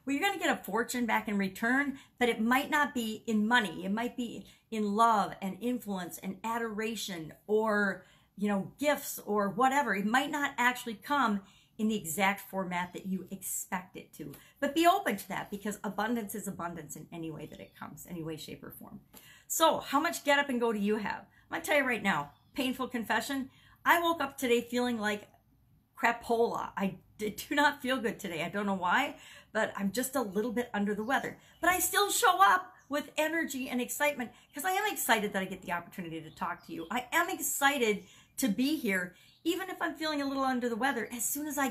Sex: female